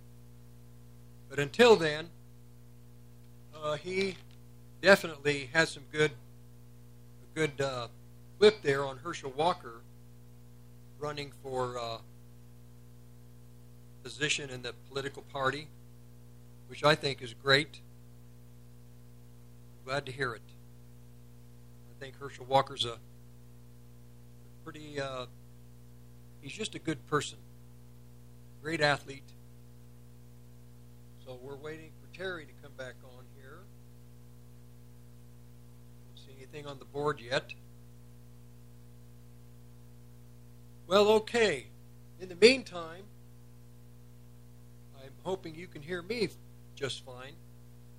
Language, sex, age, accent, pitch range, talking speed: English, male, 50-69, American, 120-145 Hz, 100 wpm